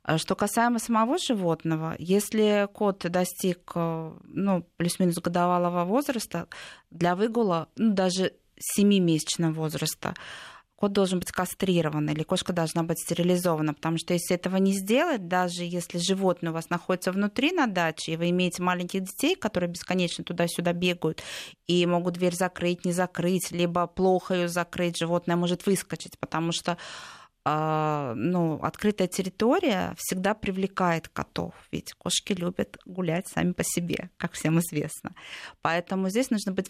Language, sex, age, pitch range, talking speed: Russian, female, 20-39, 170-200 Hz, 140 wpm